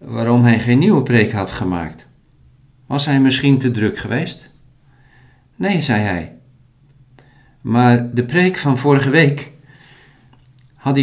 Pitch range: 115-135 Hz